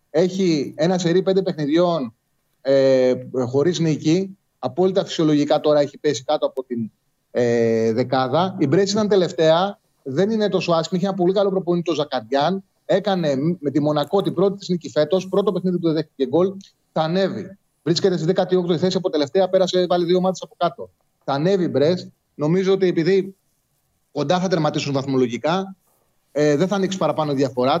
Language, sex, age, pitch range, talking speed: Greek, male, 30-49, 150-190 Hz, 170 wpm